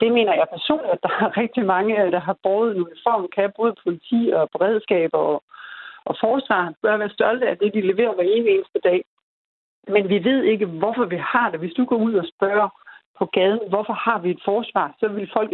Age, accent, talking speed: 60-79, native, 210 wpm